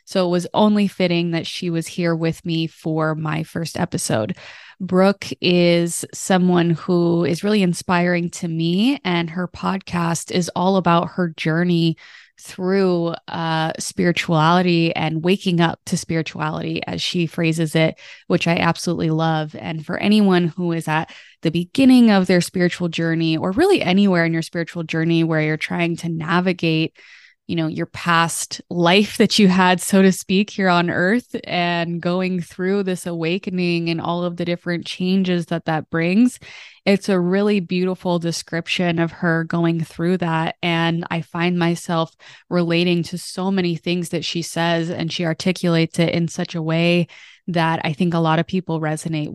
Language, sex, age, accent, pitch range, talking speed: English, female, 20-39, American, 165-180 Hz, 170 wpm